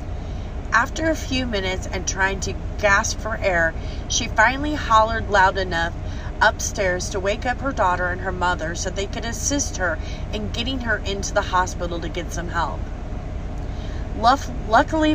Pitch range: 85-105 Hz